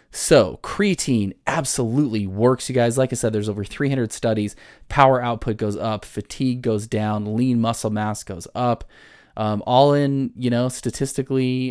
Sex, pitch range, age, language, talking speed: male, 105-125 Hz, 20-39, English, 160 wpm